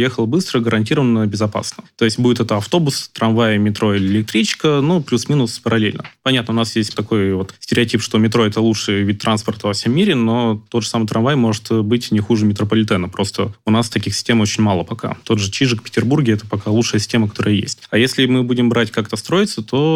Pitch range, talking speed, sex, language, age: 105-120 Hz, 205 wpm, male, Russian, 20-39